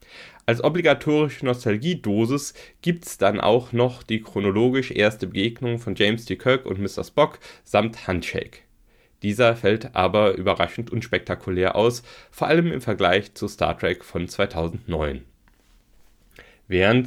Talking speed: 135 wpm